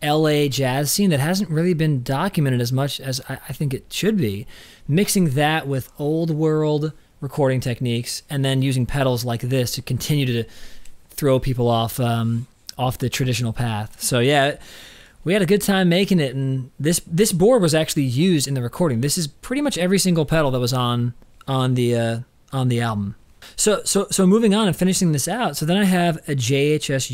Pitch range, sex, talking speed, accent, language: 125-160 Hz, male, 200 wpm, American, English